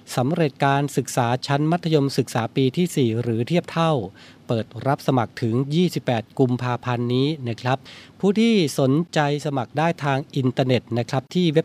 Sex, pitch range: male, 120-150 Hz